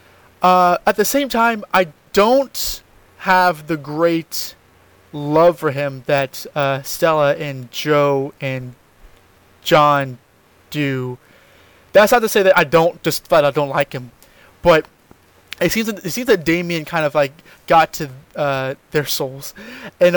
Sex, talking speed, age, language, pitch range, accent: male, 150 wpm, 20-39, English, 140-180 Hz, American